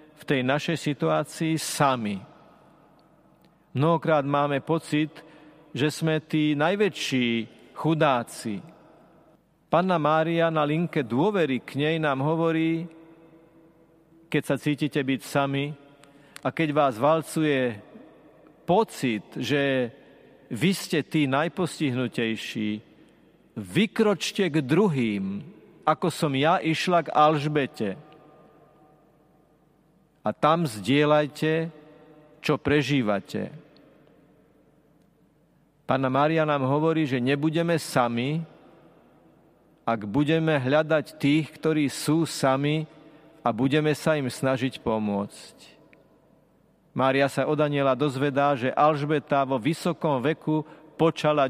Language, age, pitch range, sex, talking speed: Slovak, 40-59, 135-160 Hz, male, 95 wpm